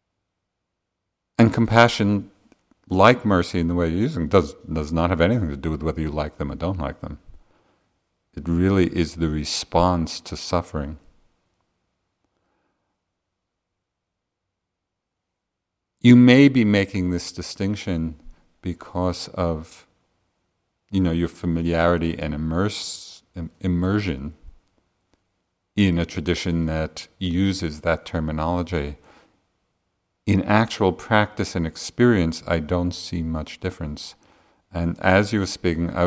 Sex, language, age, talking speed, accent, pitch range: male, English, 50-69, 115 wpm, American, 85-95 Hz